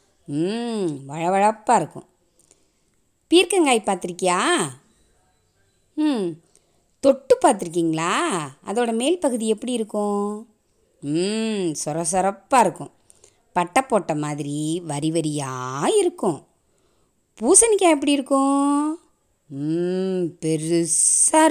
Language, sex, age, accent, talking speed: Tamil, female, 20-39, native, 75 wpm